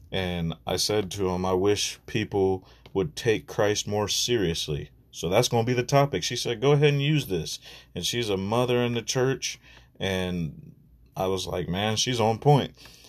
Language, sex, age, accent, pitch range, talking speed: English, male, 30-49, American, 95-125 Hz, 195 wpm